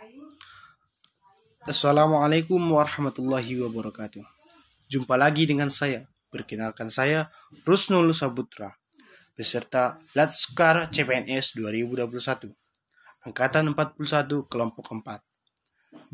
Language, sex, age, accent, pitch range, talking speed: Indonesian, male, 20-39, native, 125-165 Hz, 70 wpm